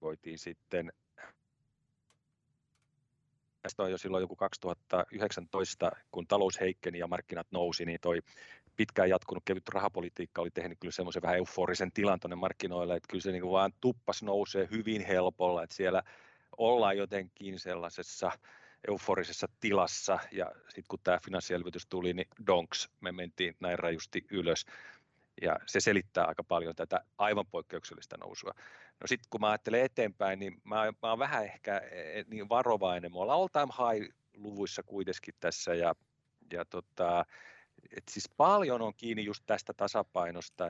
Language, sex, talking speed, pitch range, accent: Finnish, male, 140 wpm, 90-105 Hz, native